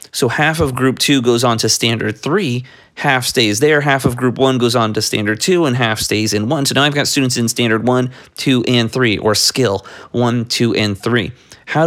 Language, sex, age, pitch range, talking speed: English, male, 30-49, 110-135 Hz, 230 wpm